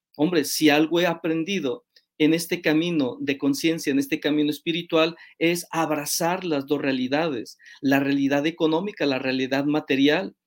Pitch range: 145-165 Hz